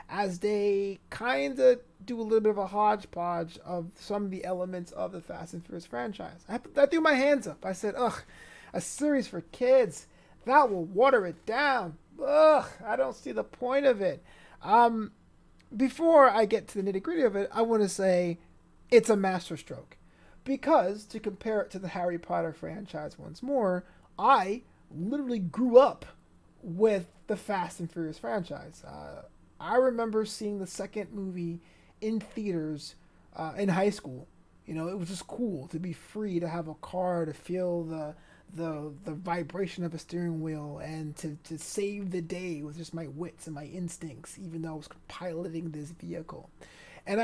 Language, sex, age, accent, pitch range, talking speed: English, male, 30-49, American, 170-225 Hz, 180 wpm